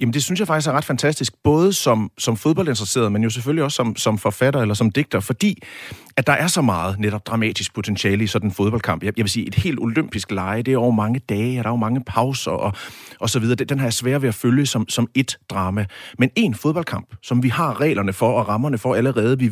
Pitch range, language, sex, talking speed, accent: 105-130 Hz, Danish, male, 250 wpm, native